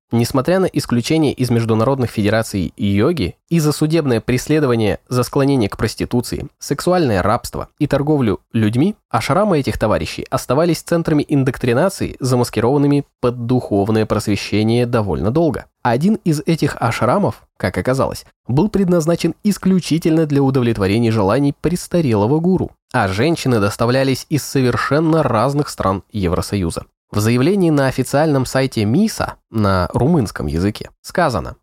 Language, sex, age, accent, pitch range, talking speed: Russian, male, 20-39, native, 115-155 Hz, 120 wpm